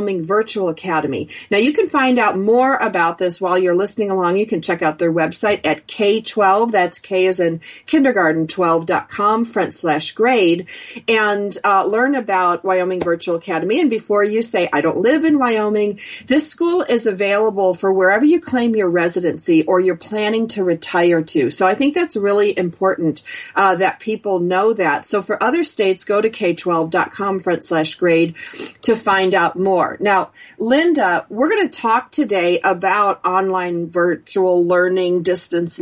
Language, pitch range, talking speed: English, 175-220 Hz, 170 wpm